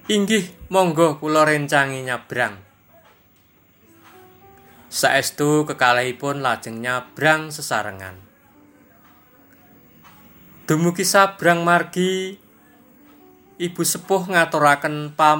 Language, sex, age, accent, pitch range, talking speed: Indonesian, male, 20-39, native, 130-165 Hz, 60 wpm